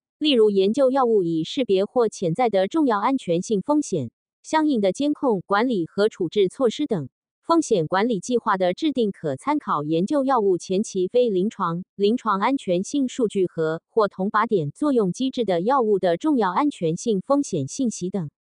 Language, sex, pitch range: Chinese, female, 180-255 Hz